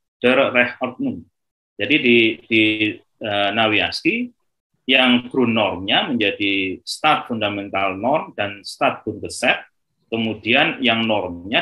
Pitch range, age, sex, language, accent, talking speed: 100-120 Hz, 30-49, male, Indonesian, native, 90 wpm